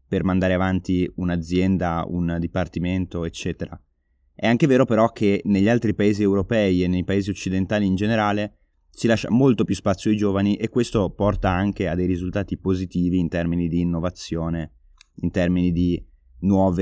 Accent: native